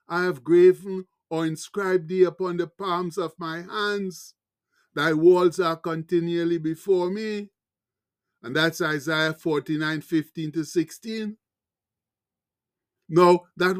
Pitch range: 175-205 Hz